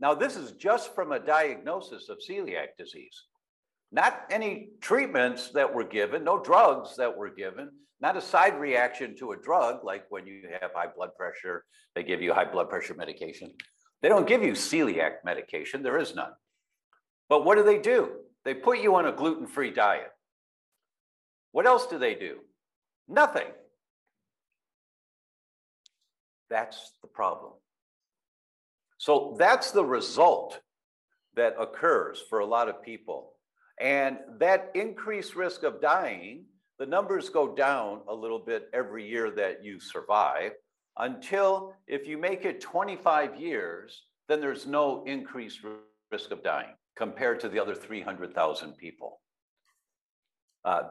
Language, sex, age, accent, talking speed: English, male, 60-79, American, 145 wpm